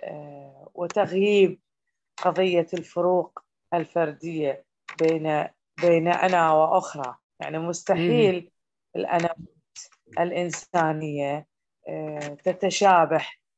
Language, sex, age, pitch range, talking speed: Arabic, female, 20-39, 155-210 Hz, 55 wpm